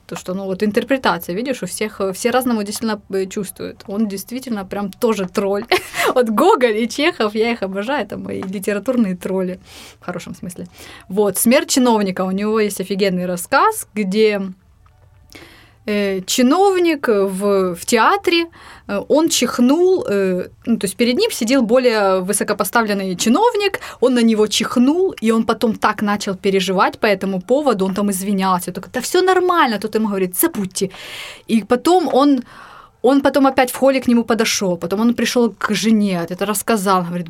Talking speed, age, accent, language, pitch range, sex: 160 wpm, 20-39, native, Russian, 200-260 Hz, female